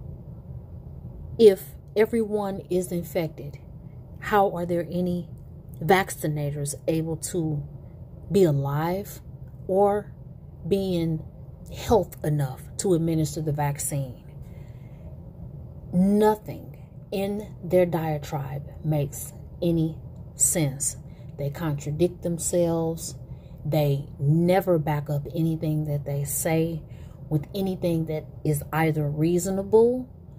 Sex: female